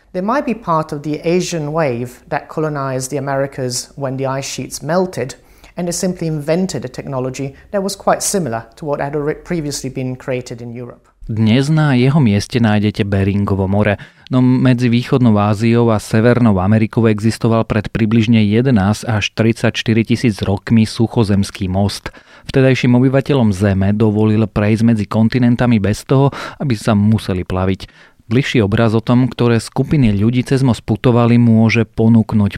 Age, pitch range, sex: 40-59, 105-125 Hz, male